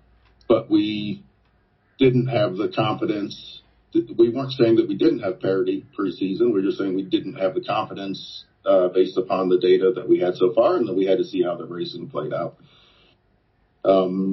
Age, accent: 40-59, American